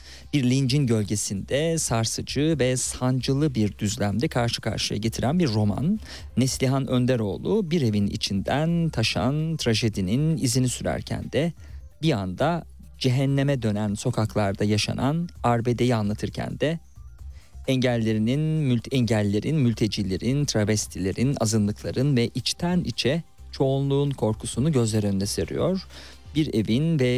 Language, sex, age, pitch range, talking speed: Turkish, male, 40-59, 100-130 Hz, 110 wpm